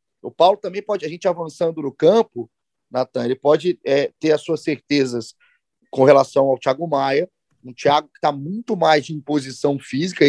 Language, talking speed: Portuguese, 180 wpm